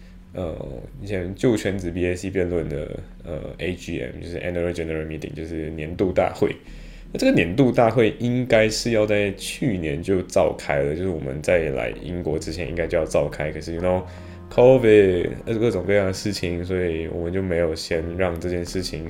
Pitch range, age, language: 85-100 Hz, 10-29, Chinese